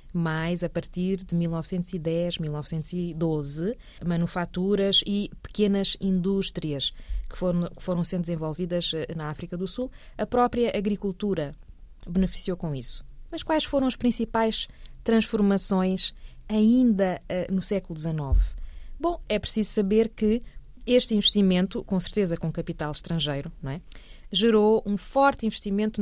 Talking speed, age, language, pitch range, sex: 120 wpm, 20-39, Portuguese, 165-210 Hz, female